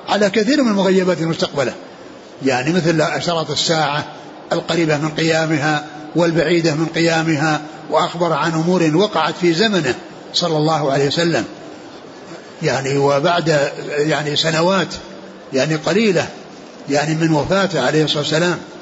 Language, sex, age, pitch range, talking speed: Arabic, male, 60-79, 155-185 Hz, 120 wpm